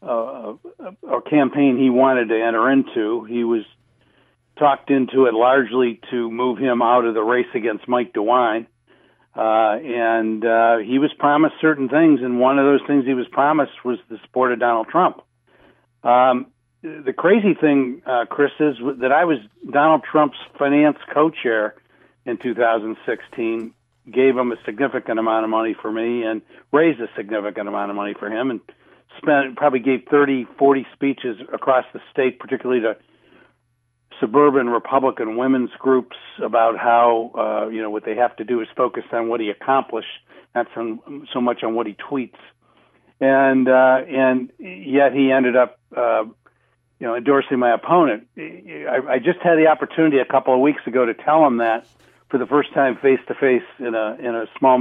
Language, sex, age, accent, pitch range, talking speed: English, male, 60-79, American, 115-140 Hz, 175 wpm